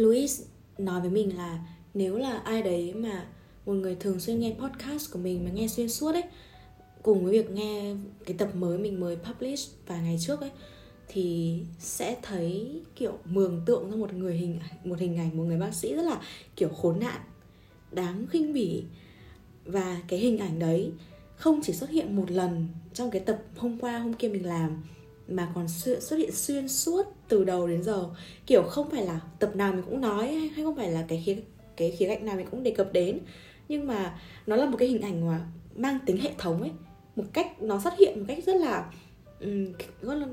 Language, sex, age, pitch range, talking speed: Vietnamese, female, 20-39, 180-245 Hz, 210 wpm